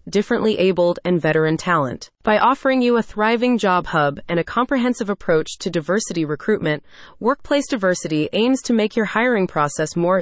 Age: 30-49